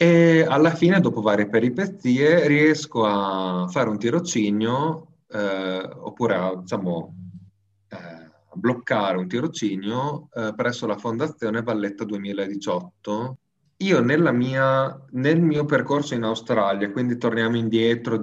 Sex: male